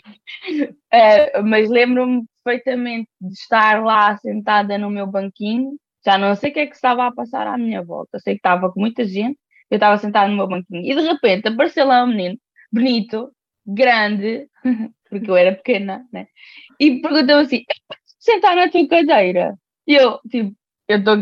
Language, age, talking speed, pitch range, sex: Portuguese, 20-39, 180 wpm, 210-265 Hz, female